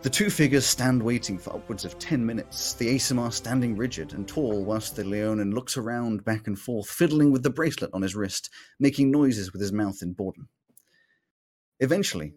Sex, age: male, 30-49